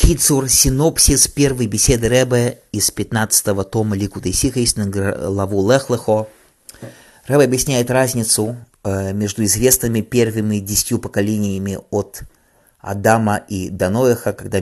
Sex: male